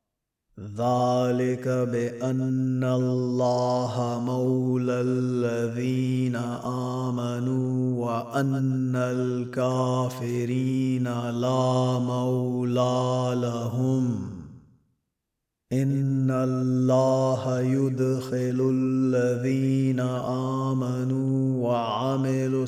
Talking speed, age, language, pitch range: 45 wpm, 30-49, Arabic, 125-130 Hz